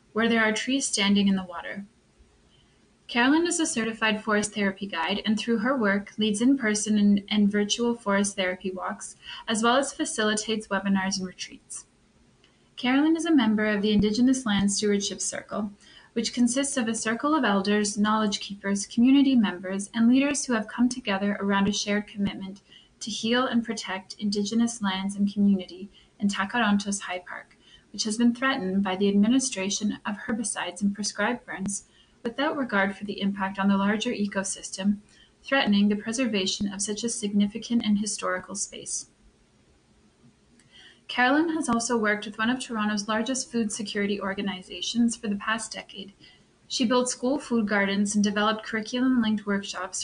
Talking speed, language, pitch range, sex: 160 wpm, English, 200-235 Hz, female